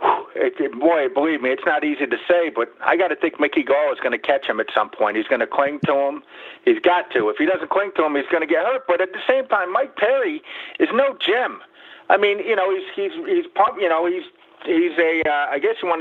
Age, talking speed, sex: 50-69, 265 wpm, male